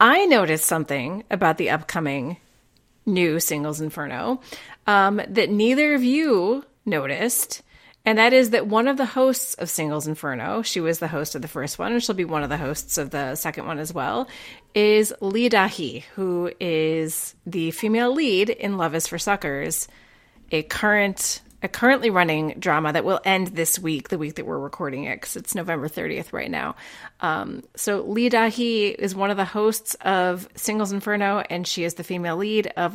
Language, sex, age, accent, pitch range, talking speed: English, female, 30-49, American, 165-220 Hz, 185 wpm